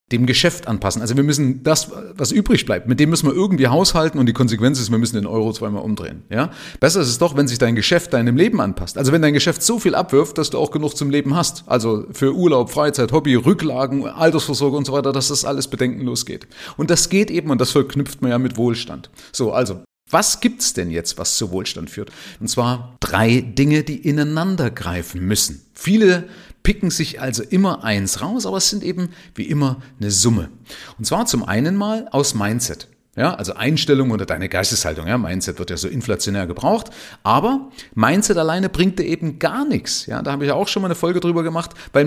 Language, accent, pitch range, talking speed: German, German, 120-175 Hz, 215 wpm